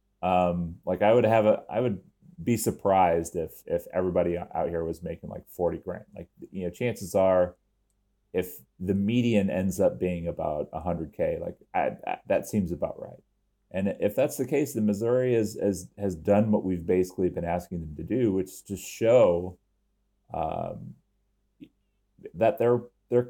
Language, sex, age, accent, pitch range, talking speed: English, male, 30-49, American, 90-120 Hz, 175 wpm